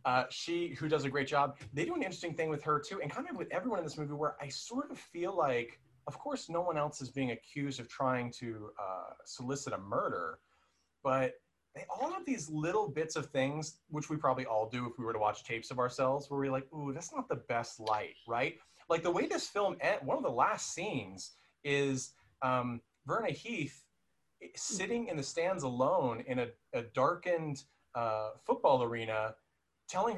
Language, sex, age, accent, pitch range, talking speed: English, male, 30-49, American, 120-155 Hz, 205 wpm